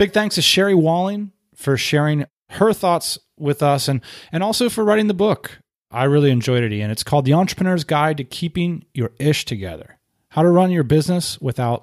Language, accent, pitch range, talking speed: English, American, 115-150 Hz, 200 wpm